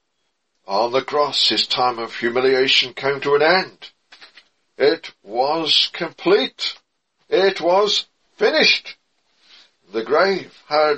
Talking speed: 110 wpm